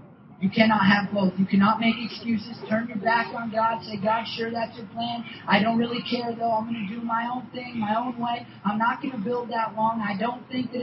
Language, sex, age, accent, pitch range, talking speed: English, male, 40-59, American, 185-225 Hz, 250 wpm